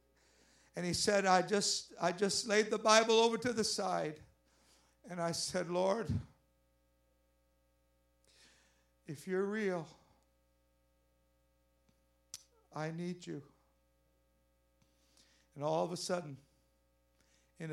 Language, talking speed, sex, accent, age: English, 100 wpm, male, American, 60-79